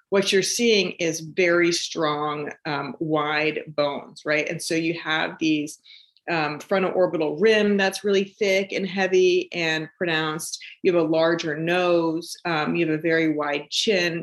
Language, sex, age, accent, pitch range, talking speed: English, female, 40-59, American, 160-195 Hz, 160 wpm